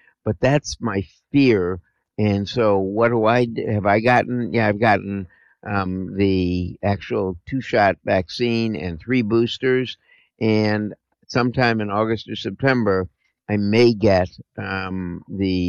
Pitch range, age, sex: 95-115 Hz, 50-69, male